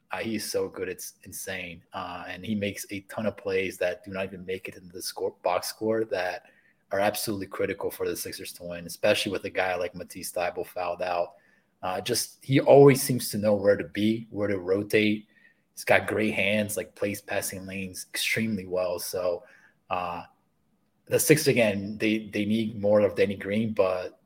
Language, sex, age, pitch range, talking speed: English, male, 20-39, 100-140 Hz, 195 wpm